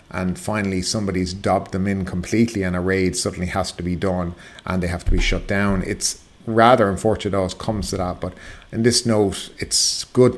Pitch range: 95-120 Hz